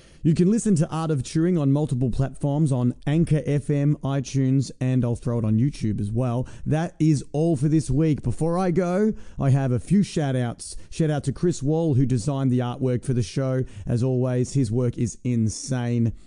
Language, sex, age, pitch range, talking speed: English, male, 30-49, 120-155 Hz, 205 wpm